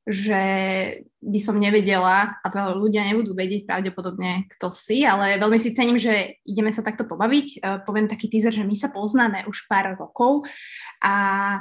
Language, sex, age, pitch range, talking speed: Slovak, female, 20-39, 200-235 Hz, 165 wpm